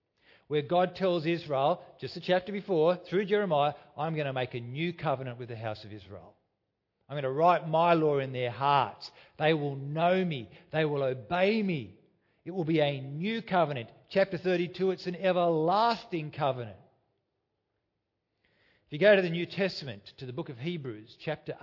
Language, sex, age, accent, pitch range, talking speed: English, male, 50-69, Australian, 135-180 Hz, 180 wpm